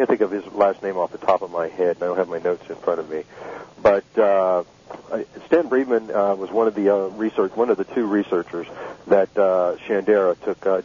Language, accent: English, American